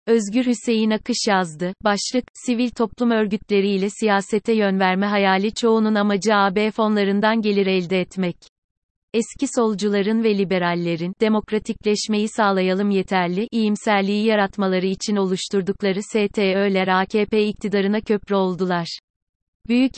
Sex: female